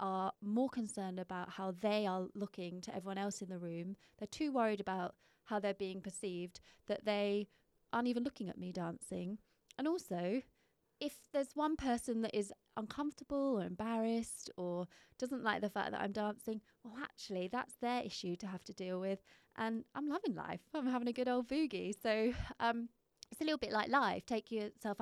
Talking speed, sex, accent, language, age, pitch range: 190 wpm, female, British, English, 20-39, 190-240 Hz